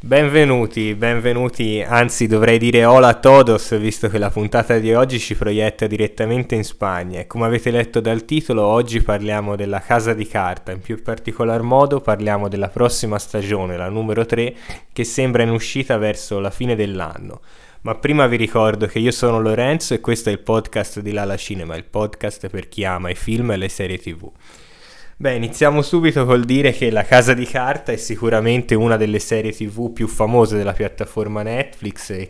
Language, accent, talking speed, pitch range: Italian, native, 185 wpm, 105-115 Hz